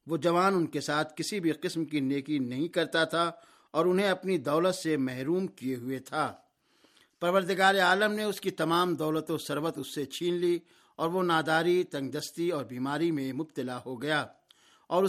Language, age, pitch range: Urdu, 60-79, 150-180 Hz